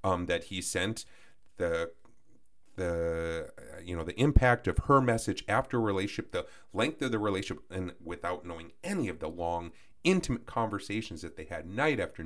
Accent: American